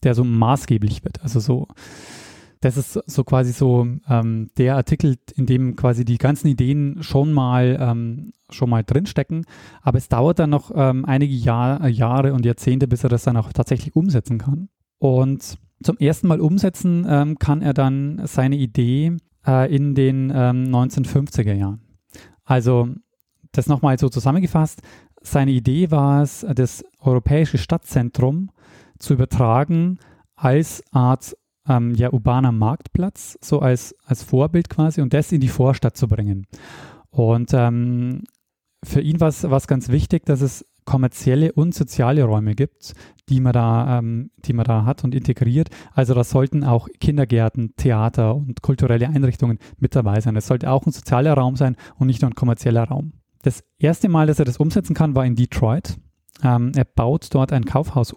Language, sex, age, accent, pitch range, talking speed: German, male, 20-39, German, 125-145 Hz, 165 wpm